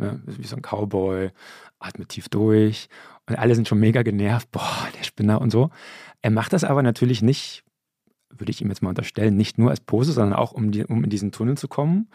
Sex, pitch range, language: male, 110-135 Hz, German